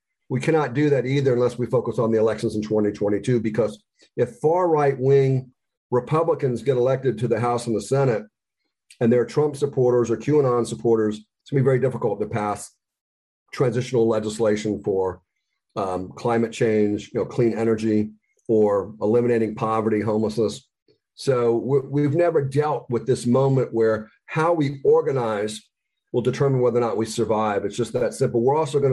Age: 50-69